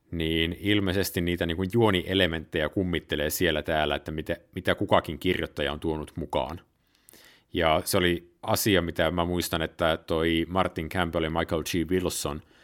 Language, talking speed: Finnish, 150 wpm